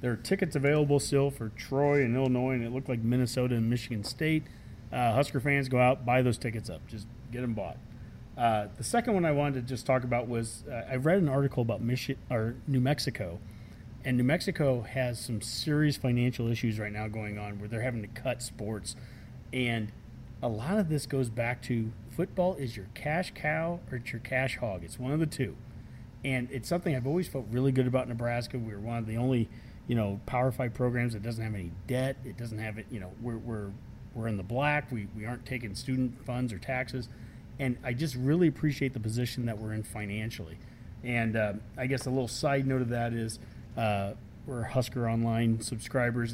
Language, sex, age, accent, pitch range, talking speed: English, male, 30-49, American, 115-130 Hz, 215 wpm